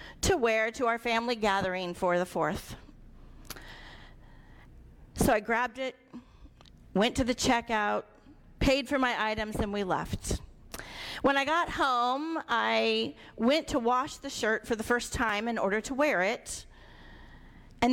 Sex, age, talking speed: female, 40-59, 145 wpm